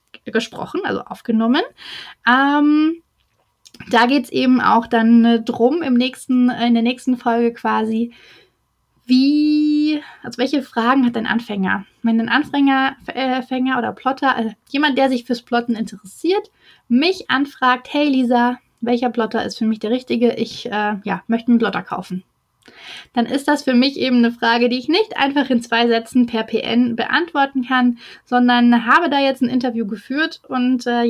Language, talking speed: German, 155 wpm